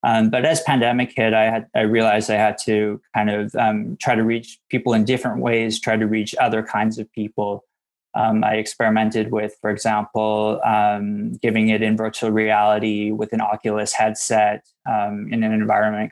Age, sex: 20-39, male